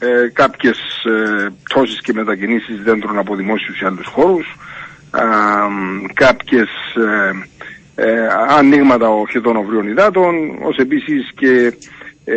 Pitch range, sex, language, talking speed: 110-145 Hz, male, Greek, 85 wpm